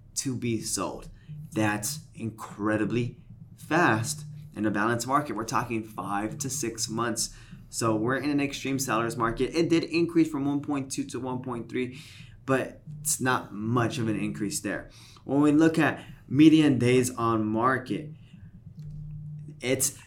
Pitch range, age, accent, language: 110-140 Hz, 20-39, American, English